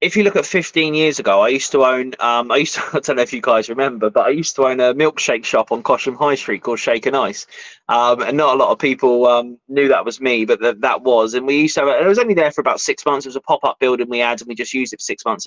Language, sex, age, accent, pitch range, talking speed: English, male, 20-39, British, 130-160 Hz, 325 wpm